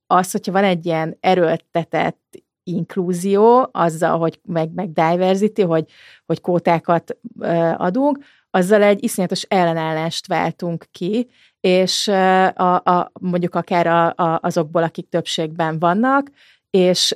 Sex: female